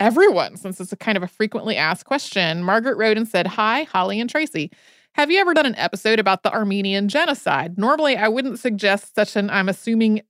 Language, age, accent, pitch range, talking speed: English, 30-49, American, 180-225 Hz, 210 wpm